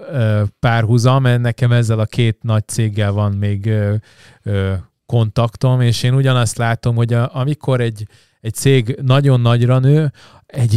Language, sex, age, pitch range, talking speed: Hungarian, male, 20-39, 110-125 Hz, 135 wpm